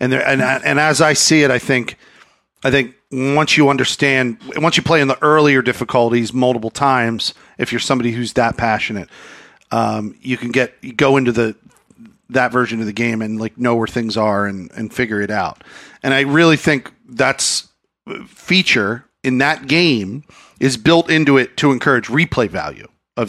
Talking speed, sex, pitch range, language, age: 185 wpm, male, 110-140 Hz, English, 40-59